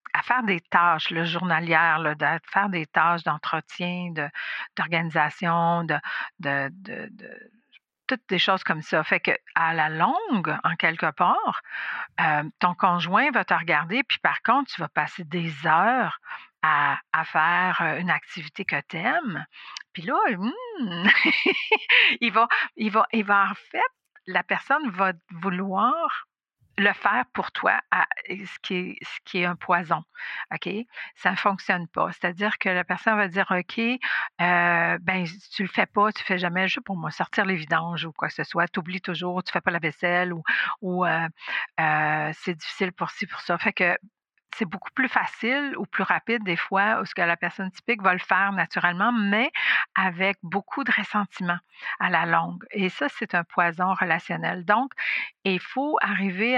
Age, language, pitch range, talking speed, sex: 50-69, French, 170-210 Hz, 180 wpm, female